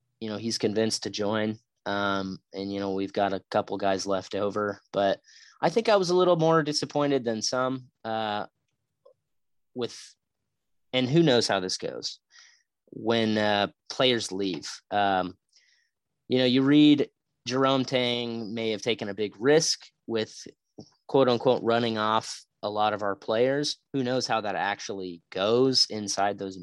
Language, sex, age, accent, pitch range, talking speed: English, male, 30-49, American, 100-130 Hz, 160 wpm